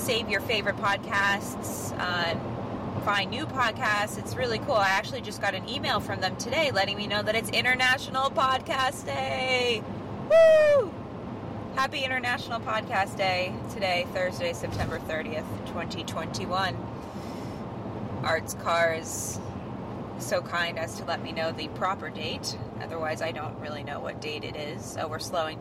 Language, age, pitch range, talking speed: English, 20-39, 160-210 Hz, 150 wpm